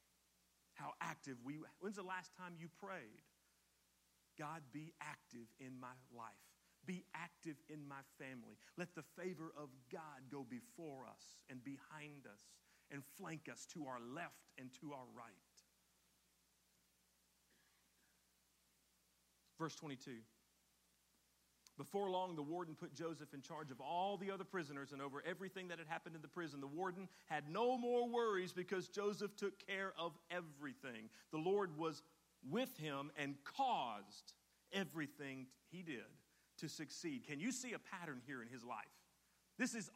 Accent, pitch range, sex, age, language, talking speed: American, 130-185 Hz, male, 50-69, English, 150 wpm